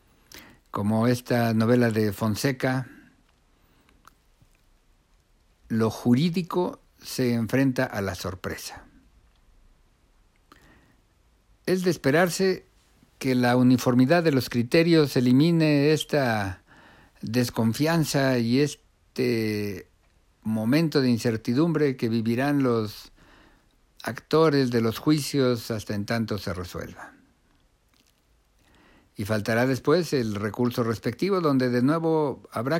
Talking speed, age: 95 wpm, 60-79